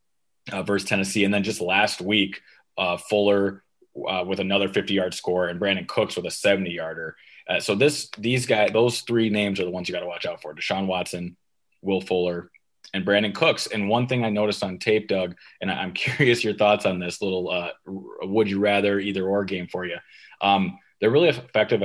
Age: 20-39